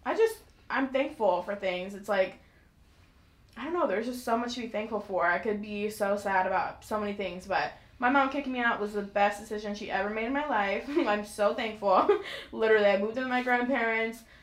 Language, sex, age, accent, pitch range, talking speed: English, female, 20-39, American, 195-235 Hz, 220 wpm